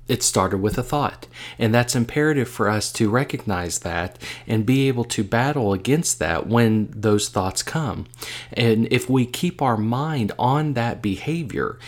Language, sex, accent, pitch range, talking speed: English, male, American, 100-125 Hz, 165 wpm